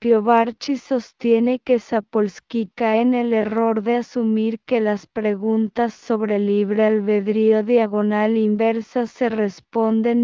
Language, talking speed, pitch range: English, 115 wpm, 210-235 Hz